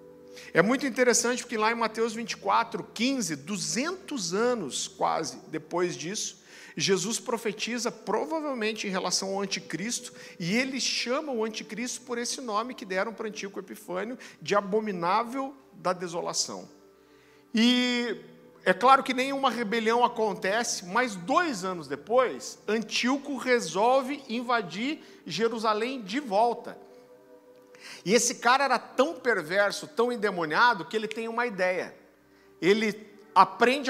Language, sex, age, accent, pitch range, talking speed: Portuguese, male, 50-69, Brazilian, 185-240 Hz, 125 wpm